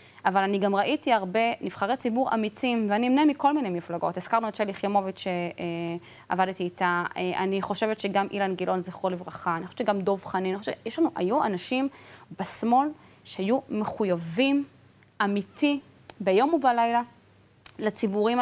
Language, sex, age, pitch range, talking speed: Hebrew, female, 20-39, 185-245 Hz, 145 wpm